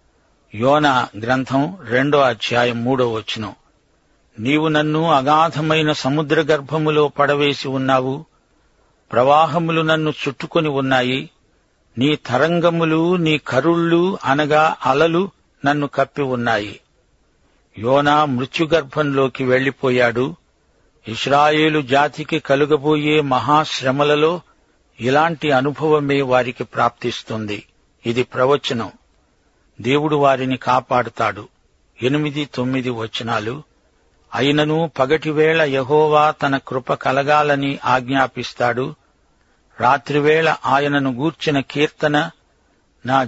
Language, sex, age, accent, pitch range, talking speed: Telugu, male, 50-69, native, 125-155 Hz, 80 wpm